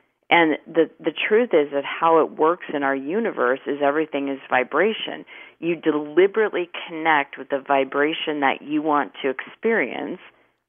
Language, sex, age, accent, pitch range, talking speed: English, female, 40-59, American, 140-175 Hz, 150 wpm